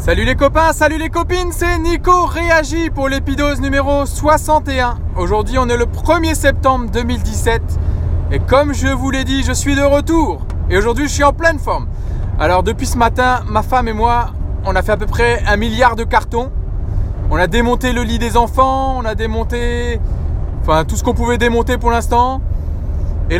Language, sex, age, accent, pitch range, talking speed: French, male, 20-39, French, 85-120 Hz, 185 wpm